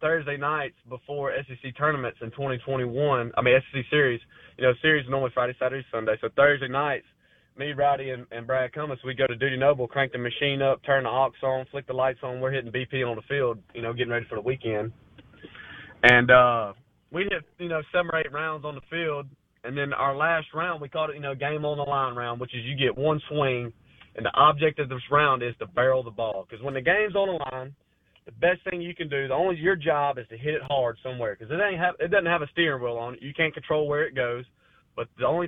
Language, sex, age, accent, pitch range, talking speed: English, male, 20-39, American, 125-150 Hz, 245 wpm